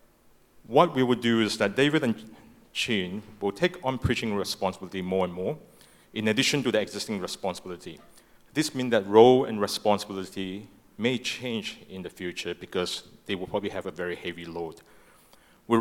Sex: male